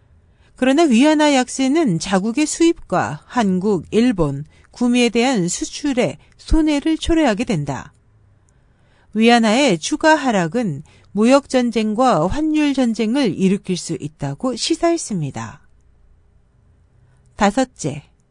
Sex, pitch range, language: female, 165-260 Hz, Korean